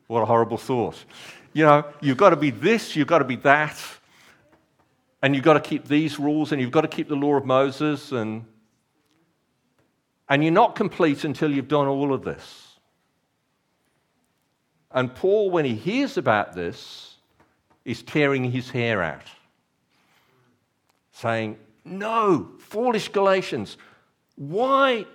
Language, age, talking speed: English, 50-69, 145 wpm